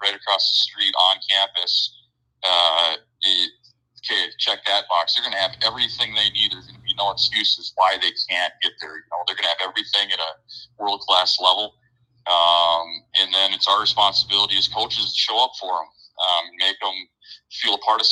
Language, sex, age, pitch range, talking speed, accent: English, male, 30-49, 95-120 Hz, 200 wpm, American